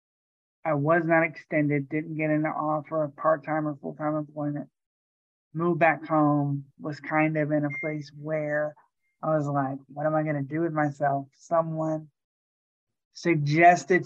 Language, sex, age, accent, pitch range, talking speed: English, male, 20-39, American, 140-155 Hz, 155 wpm